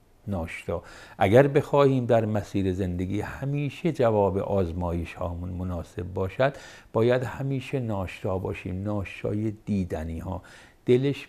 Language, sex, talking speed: Persian, male, 105 wpm